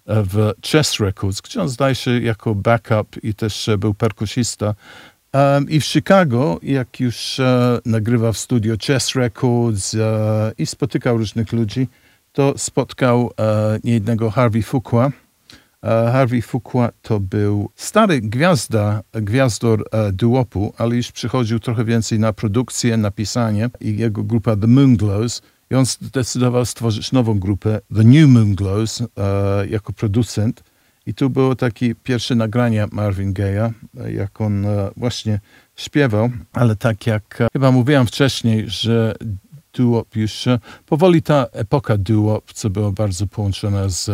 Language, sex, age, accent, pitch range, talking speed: Polish, male, 50-69, native, 110-125 Hz, 130 wpm